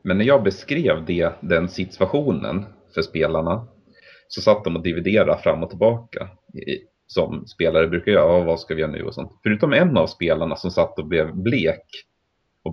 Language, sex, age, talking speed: Swedish, male, 30-49, 185 wpm